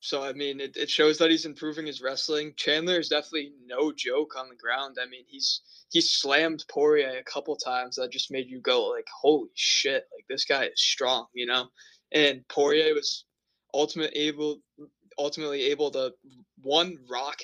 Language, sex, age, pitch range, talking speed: English, male, 20-39, 140-205 Hz, 180 wpm